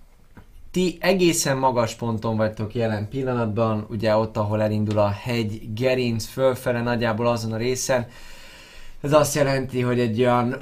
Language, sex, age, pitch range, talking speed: Hungarian, male, 20-39, 95-120 Hz, 140 wpm